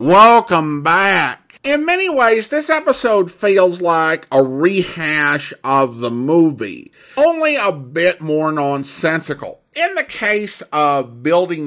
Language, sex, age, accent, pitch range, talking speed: English, male, 50-69, American, 150-215 Hz, 125 wpm